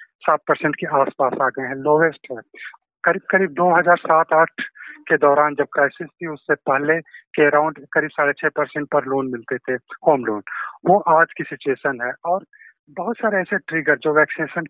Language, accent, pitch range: Hindi, native, 150-170 Hz